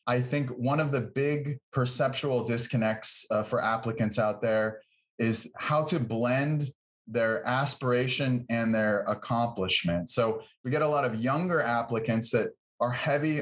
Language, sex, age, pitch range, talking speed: English, male, 30-49, 115-145 Hz, 150 wpm